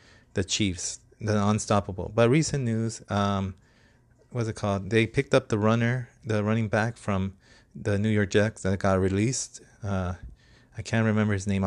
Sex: male